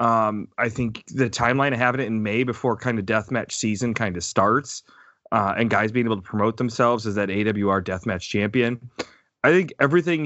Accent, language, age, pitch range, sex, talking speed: American, English, 30-49, 115-145 Hz, male, 200 wpm